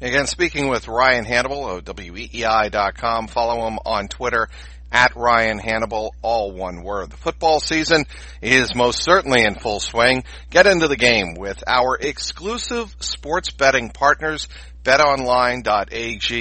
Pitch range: 100-125 Hz